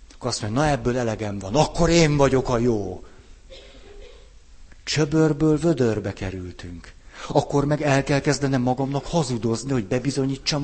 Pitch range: 90-125 Hz